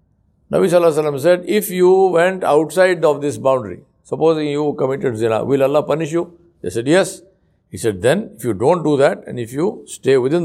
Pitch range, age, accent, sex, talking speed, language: 135-180 Hz, 60-79, Indian, male, 195 wpm, English